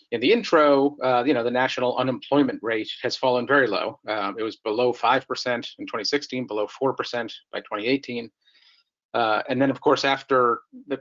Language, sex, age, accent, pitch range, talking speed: English, male, 40-59, American, 120-155 Hz, 185 wpm